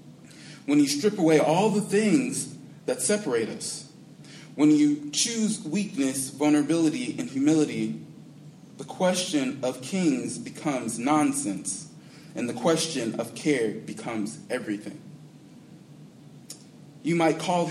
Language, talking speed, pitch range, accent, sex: English, 110 wpm, 130-165 Hz, American, male